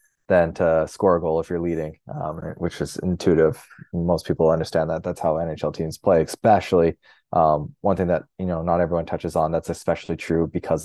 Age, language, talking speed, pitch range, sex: 20-39, English, 200 wpm, 80-95 Hz, male